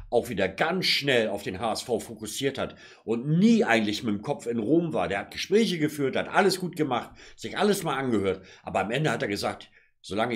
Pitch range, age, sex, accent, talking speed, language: 115-155 Hz, 50-69, male, German, 215 wpm, German